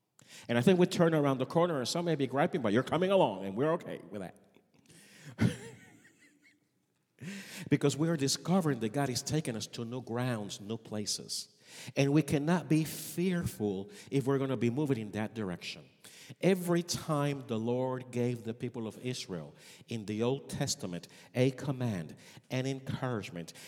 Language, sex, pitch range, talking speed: English, male, 125-175 Hz, 170 wpm